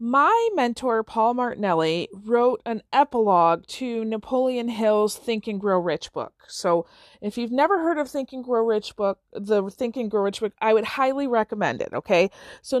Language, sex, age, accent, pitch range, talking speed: English, female, 40-59, American, 195-260 Hz, 185 wpm